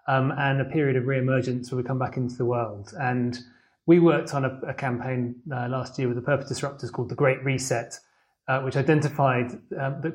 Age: 30-49